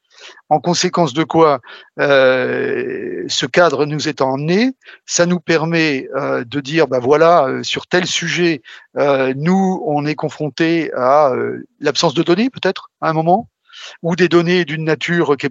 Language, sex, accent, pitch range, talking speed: English, male, French, 145-185 Hz, 165 wpm